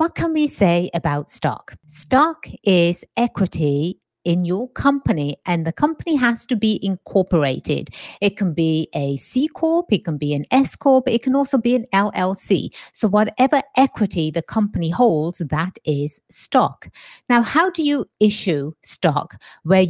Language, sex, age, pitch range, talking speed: English, female, 50-69, 165-235 Hz, 155 wpm